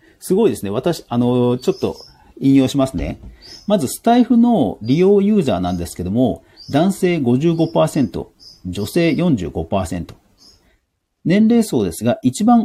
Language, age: Japanese, 40-59